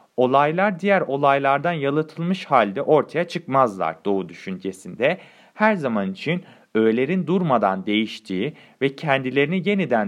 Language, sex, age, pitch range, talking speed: Turkish, male, 40-59, 120-190 Hz, 105 wpm